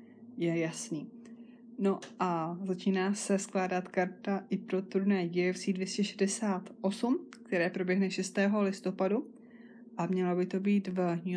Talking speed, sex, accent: 125 wpm, female, native